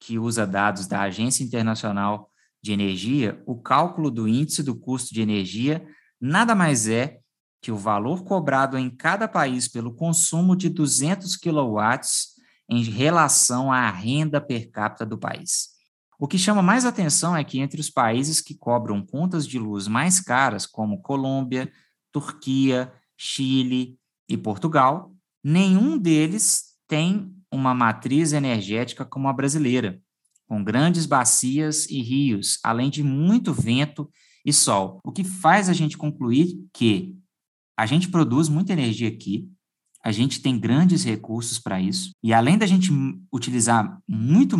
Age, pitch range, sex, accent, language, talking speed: 20-39, 115-165 Hz, male, Brazilian, English, 145 wpm